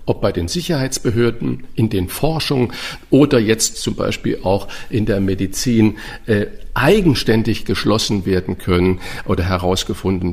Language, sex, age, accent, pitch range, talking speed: German, male, 50-69, German, 95-120 Hz, 130 wpm